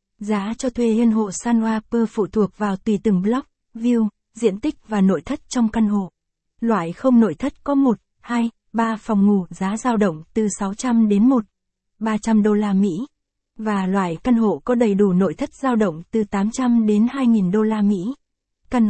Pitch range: 200-235 Hz